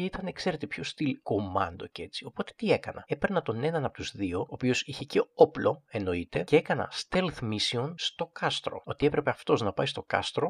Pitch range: 120-165 Hz